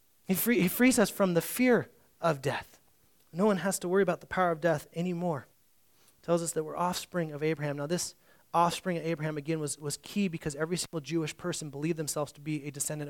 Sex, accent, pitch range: male, American, 150-205 Hz